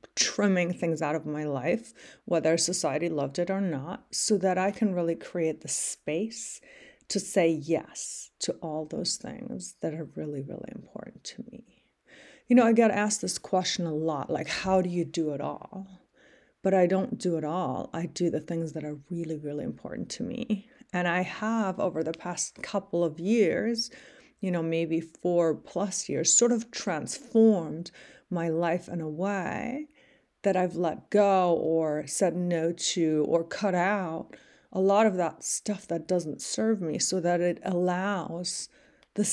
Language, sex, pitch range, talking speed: English, female, 165-210 Hz, 175 wpm